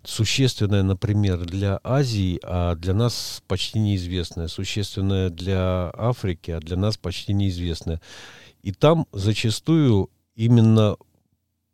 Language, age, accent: Russian, 50-69, native